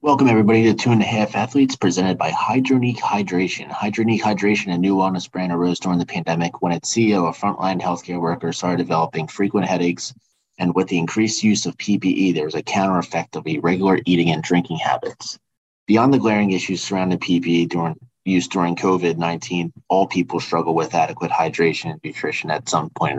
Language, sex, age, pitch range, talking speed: English, male, 30-49, 85-100 Hz, 190 wpm